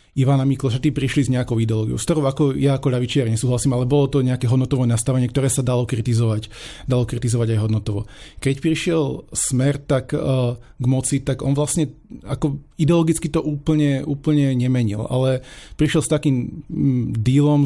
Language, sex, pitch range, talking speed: Slovak, male, 120-140 Hz, 170 wpm